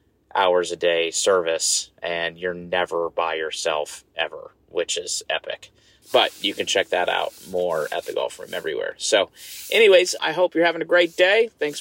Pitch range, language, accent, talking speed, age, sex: 125-170 Hz, English, American, 180 wpm, 30-49, male